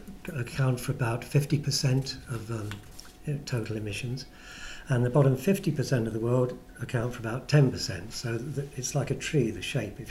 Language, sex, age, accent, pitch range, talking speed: English, male, 50-69, British, 120-145 Hz, 165 wpm